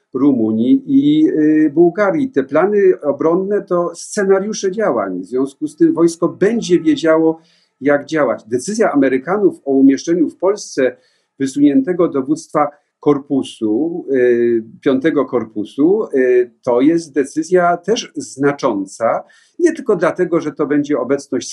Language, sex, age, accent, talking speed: Polish, male, 50-69, native, 115 wpm